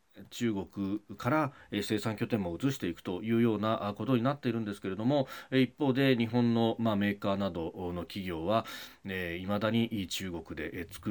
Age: 40-59